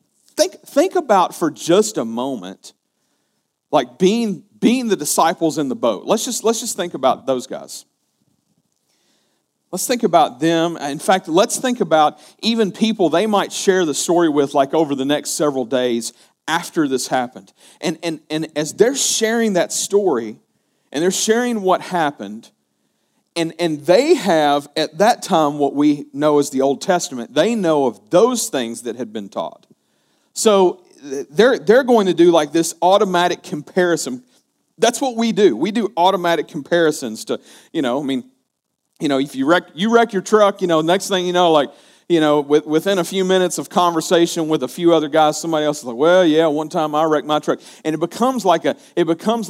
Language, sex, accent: English, male, American